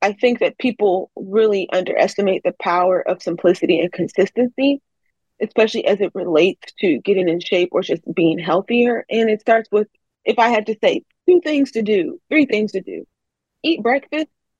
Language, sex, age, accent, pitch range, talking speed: English, female, 20-39, American, 190-245 Hz, 175 wpm